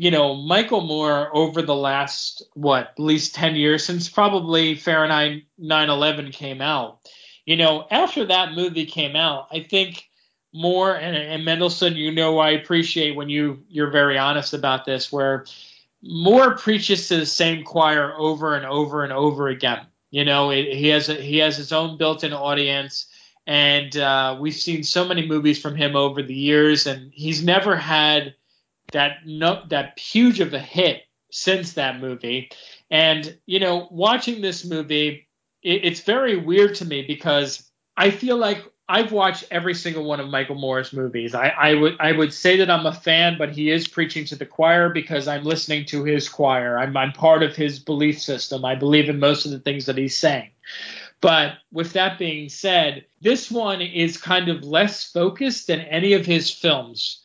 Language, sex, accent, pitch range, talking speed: English, male, American, 145-175 Hz, 180 wpm